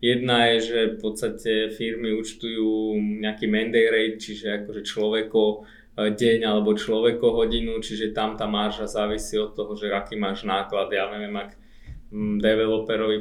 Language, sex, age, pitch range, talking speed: Slovak, male, 20-39, 105-115 Hz, 140 wpm